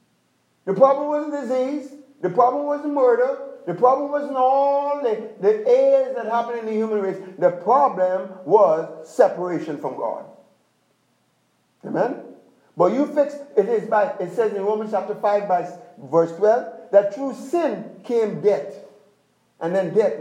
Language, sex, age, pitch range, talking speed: English, male, 50-69, 195-290 Hz, 150 wpm